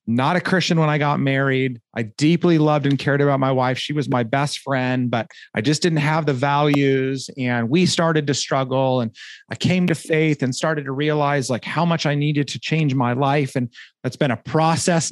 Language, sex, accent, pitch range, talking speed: English, male, American, 130-160 Hz, 220 wpm